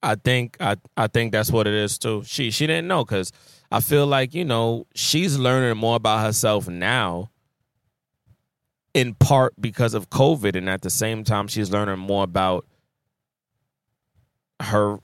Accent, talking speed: American, 165 wpm